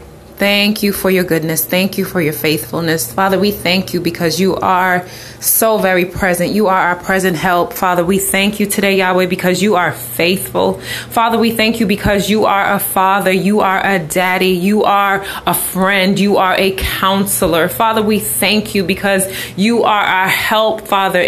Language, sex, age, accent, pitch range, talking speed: English, female, 20-39, American, 195-225 Hz, 185 wpm